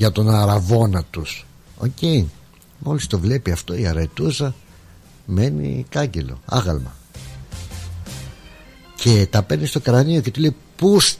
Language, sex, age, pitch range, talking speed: Greek, male, 60-79, 90-140 Hz, 130 wpm